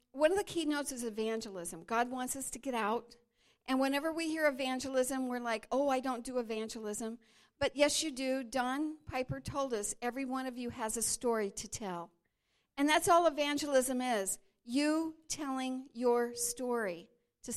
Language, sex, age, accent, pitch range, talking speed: English, female, 50-69, American, 220-280 Hz, 175 wpm